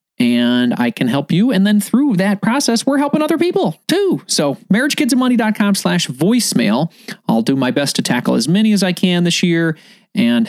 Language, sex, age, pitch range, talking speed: English, male, 30-49, 185-230 Hz, 190 wpm